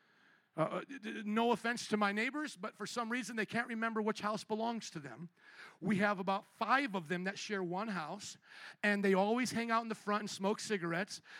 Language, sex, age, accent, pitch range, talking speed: English, male, 40-59, American, 170-220 Hz, 205 wpm